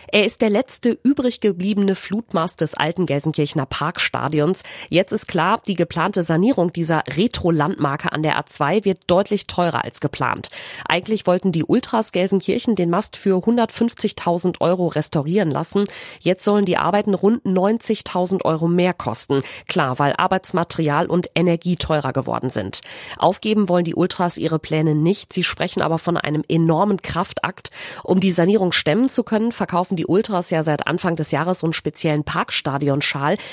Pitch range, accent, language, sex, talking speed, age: 155-200 Hz, German, German, female, 155 wpm, 30-49